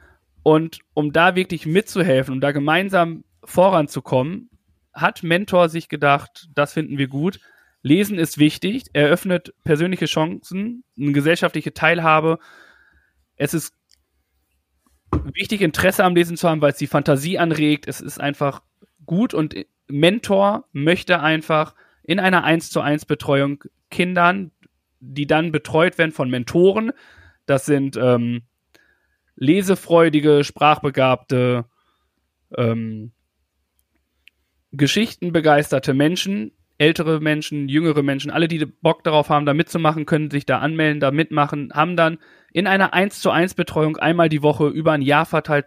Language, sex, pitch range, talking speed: German, male, 145-170 Hz, 125 wpm